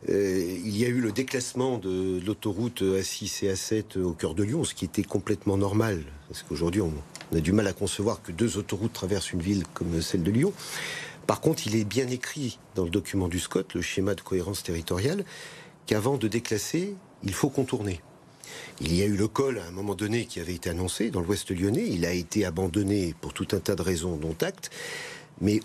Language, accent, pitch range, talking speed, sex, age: French, French, 90-120 Hz, 215 wpm, male, 50-69